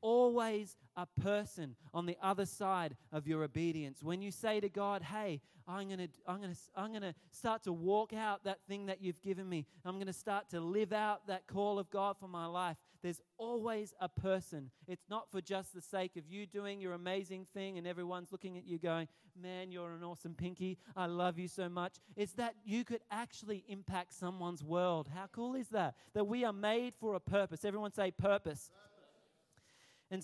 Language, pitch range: English, 170-200 Hz